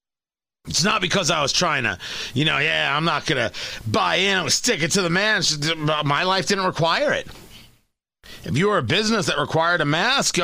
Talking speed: 205 wpm